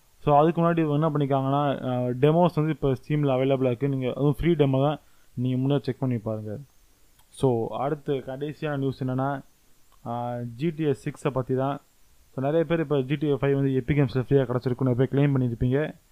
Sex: male